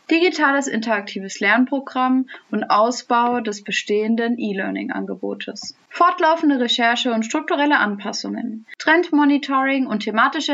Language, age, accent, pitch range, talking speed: German, 20-39, German, 220-280 Hz, 90 wpm